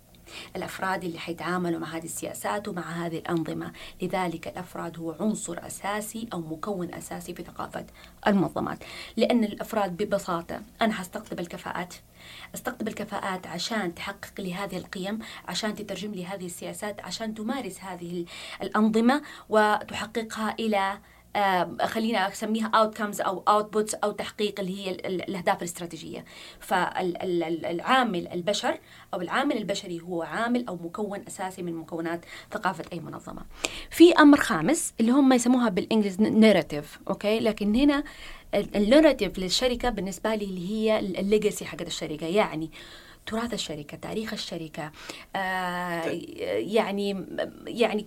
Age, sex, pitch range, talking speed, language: 20-39, female, 175-215 Hz, 120 wpm, Arabic